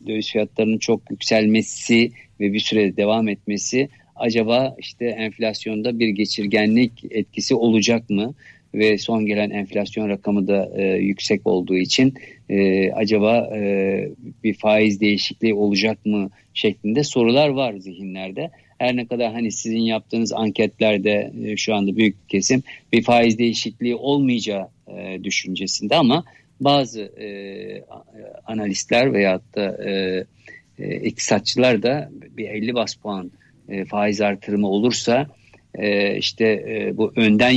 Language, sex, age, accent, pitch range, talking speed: Turkish, male, 50-69, native, 100-115 Hz, 130 wpm